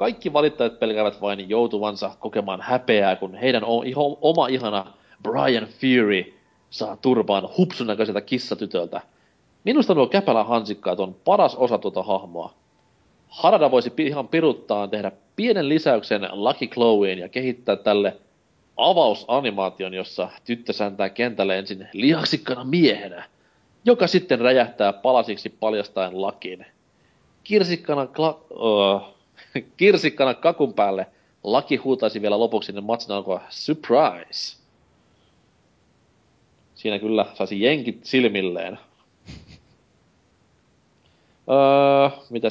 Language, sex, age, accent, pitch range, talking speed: Finnish, male, 30-49, native, 100-130 Hz, 105 wpm